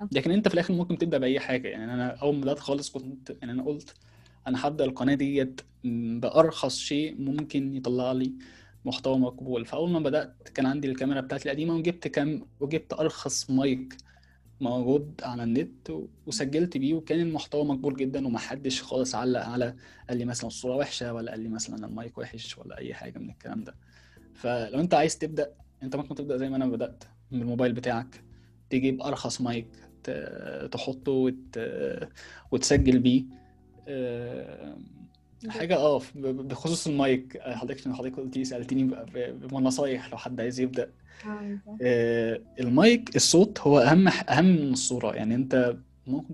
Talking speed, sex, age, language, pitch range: 150 wpm, male, 20-39, Arabic, 120-145 Hz